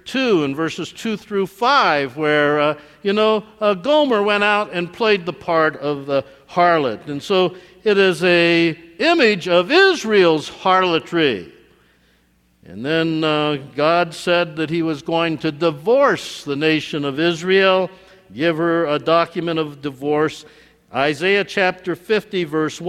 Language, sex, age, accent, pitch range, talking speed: English, male, 60-79, American, 155-195 Hz, 140 wpm